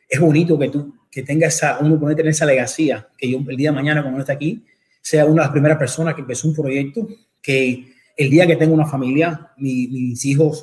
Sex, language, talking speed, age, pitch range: male, Spanish, 235 wpm, 30-49, 140-175 Hz